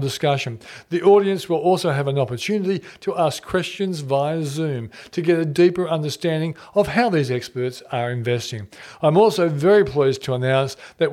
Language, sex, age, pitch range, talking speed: English, male, 40-59, 135-180 Hz, 165 wpm